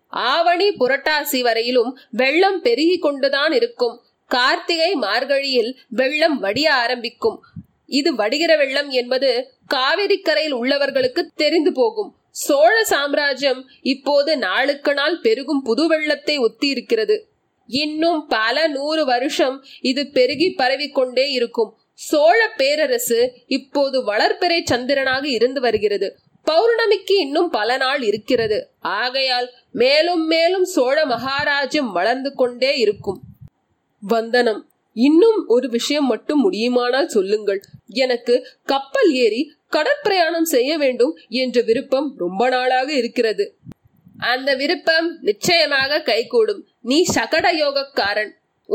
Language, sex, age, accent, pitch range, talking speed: Tamil, female, 20-39, native, 255-335 Hz, 100 wpm